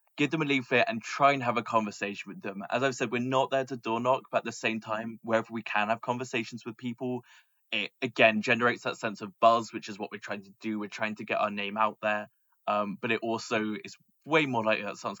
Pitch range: 105-125 Hz